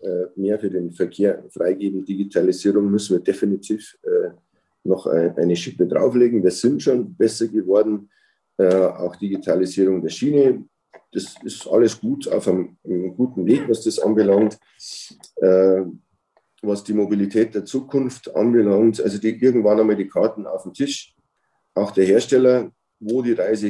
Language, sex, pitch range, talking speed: German, male, 95-115 Hz, 145 wpm